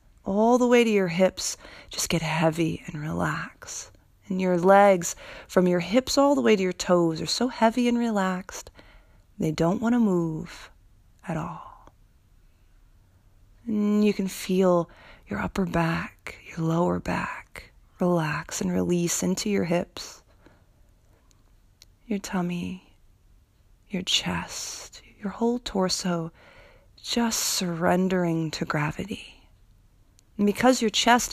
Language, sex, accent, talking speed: English, female, American, 125 wpm